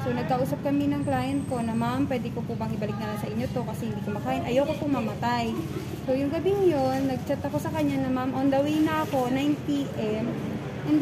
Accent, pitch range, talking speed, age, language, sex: native, 210-305 Hz, 230 wpm, 20-39, Filipino, female